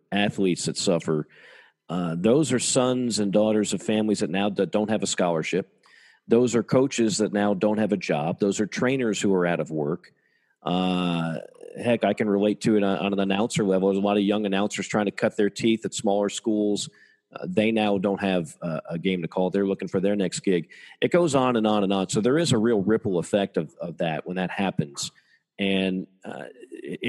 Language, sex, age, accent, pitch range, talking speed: English, male, 40-59, American, 95-110 Hz, 215 wpm